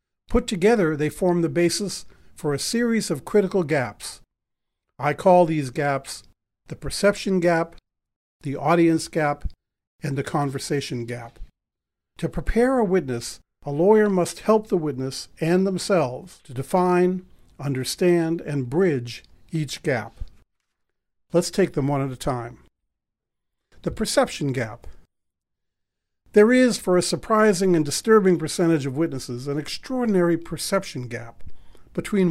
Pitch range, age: 140-180 Hz, 50-69